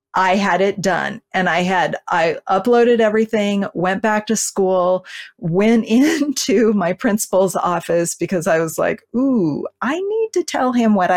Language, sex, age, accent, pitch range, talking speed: English, female, 30-49, American, 170-220 Hz, 160 wpm